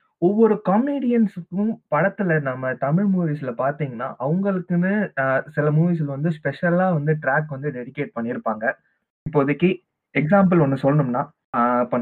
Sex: male